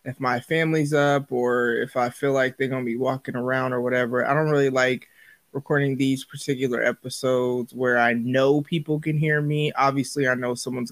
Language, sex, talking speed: English, male, 200 wpm